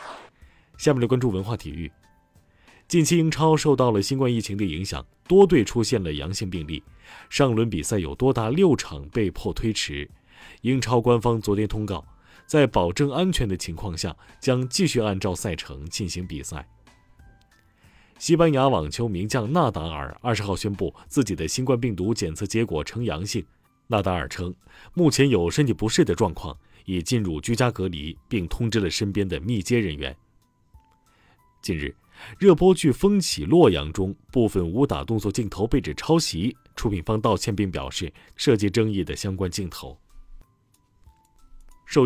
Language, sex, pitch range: Chinese, male, 90-125 Hz